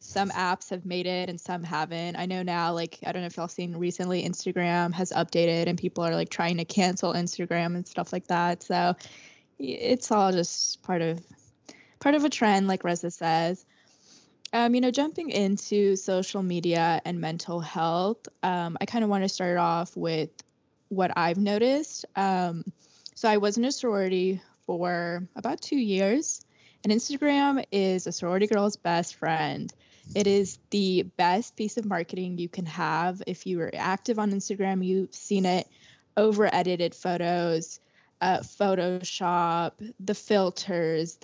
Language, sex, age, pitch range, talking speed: English, female, 10-29, 175-210 Hz, 165 wpm